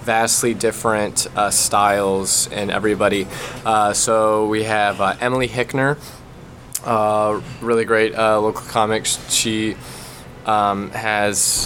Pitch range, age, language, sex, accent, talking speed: 105-120 Hz, 20-39, English, male, American, 115 wpm